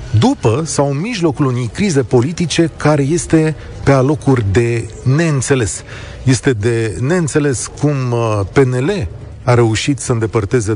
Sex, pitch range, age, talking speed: male, 110-155 Hz, 40-59, 125 wpm